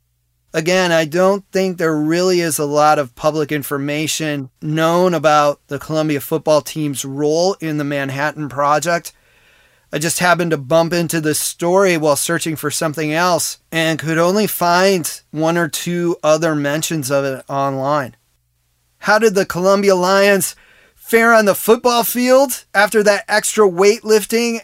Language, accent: English, American